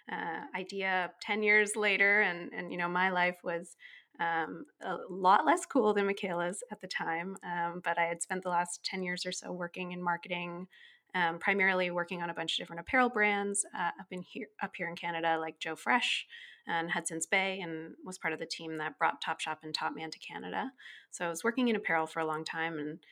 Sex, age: female, 20-39